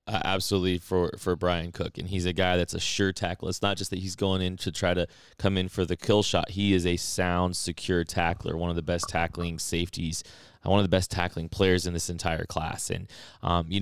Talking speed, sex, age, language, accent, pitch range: 240 wpm, male, 20-39, English, American, 85-95 Hz